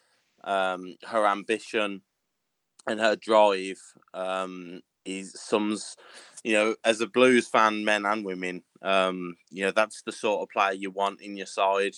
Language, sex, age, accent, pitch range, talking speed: English, male, 20-39, British, 95-105 Hz, 155 wpm